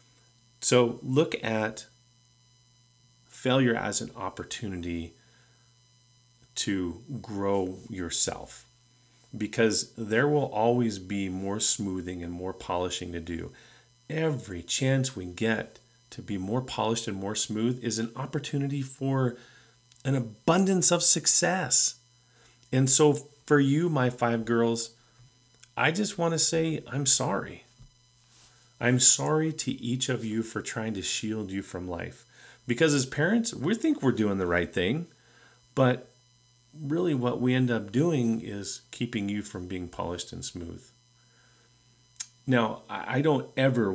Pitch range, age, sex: 105-125 Hz, 40-59, male